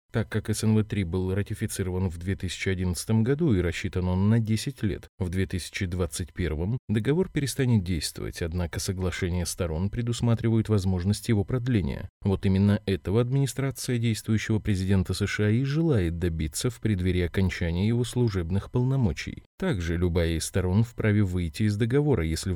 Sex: male